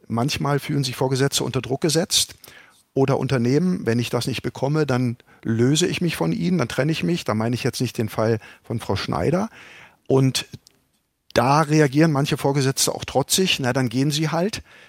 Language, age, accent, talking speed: German, 50-69, German, 185 wpm